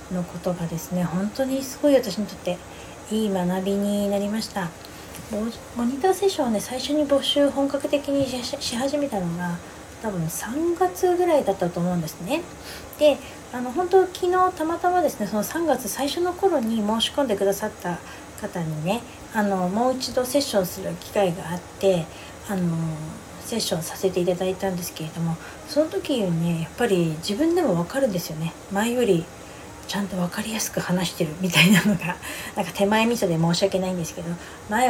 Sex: female